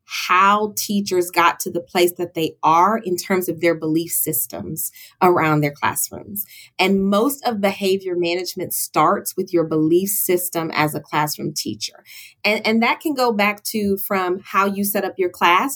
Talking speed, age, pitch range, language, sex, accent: 175 wpm, 30-49, 175-215 Hz, English, female, American